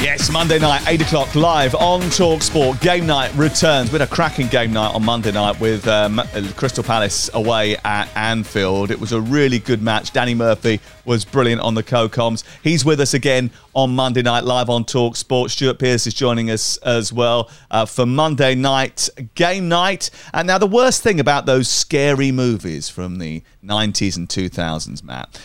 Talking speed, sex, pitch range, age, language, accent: 185 wpm, male, 110-145 Hz, 40-59, English, British